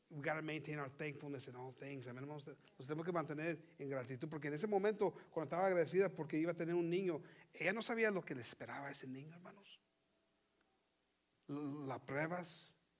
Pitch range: 150-210 Hz